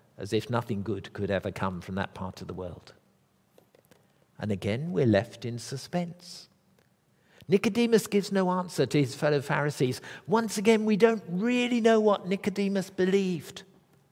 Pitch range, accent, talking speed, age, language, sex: 115-185 Hz, British, 155 wpm, 50-69, English, male